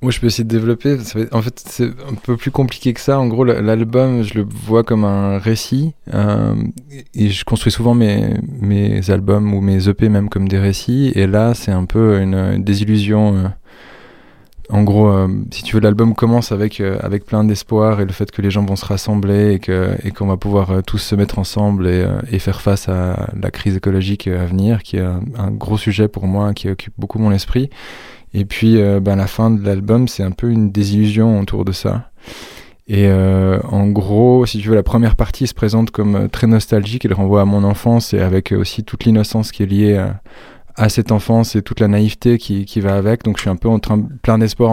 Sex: male